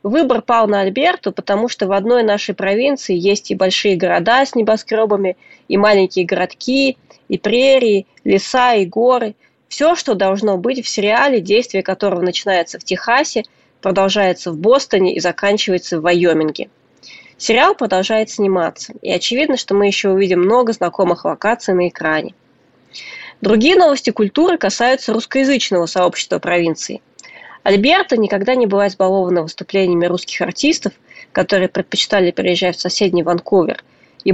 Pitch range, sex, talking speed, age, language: 185-230 Hz, female, 135 wpm, 20-39, Russian